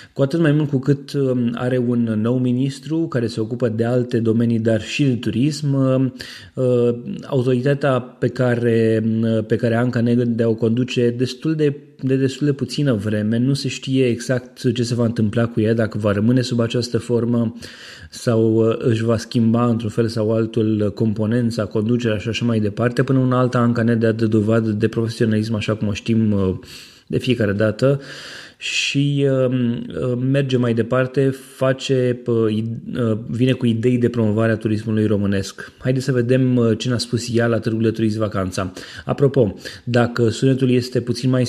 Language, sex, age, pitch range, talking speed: Romanian, male, 20-39, 110-130 Hz, 165 wpm